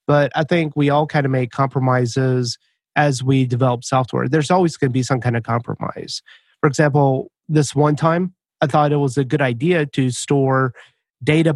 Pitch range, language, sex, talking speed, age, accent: 135-170 Hz, English, male, 190 wpm, 30-49, American